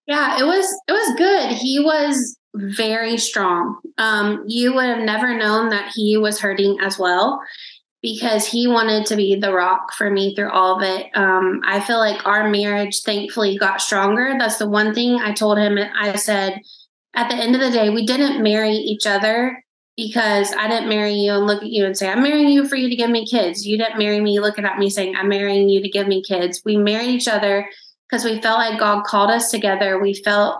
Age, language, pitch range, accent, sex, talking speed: 20-39, English, 200-235 Hz, American, female, 220 wpm